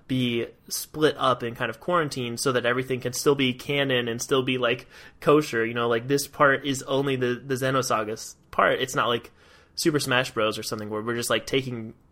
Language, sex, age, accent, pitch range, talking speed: English, male, 20-39, American, 110-140 Hz, 215 wpm